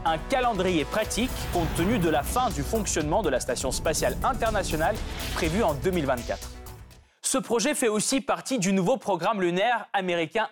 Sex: male